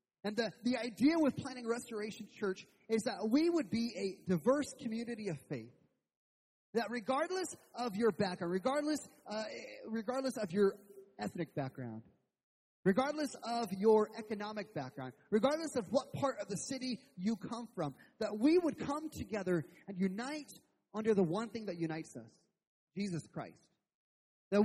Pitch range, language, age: 185-265 Hz, English, 30-49